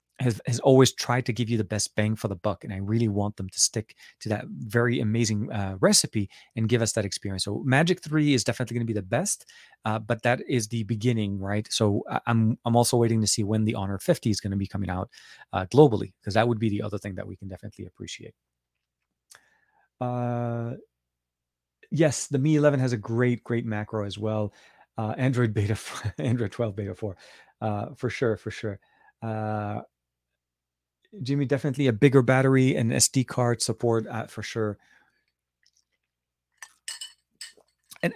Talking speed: 185 wpm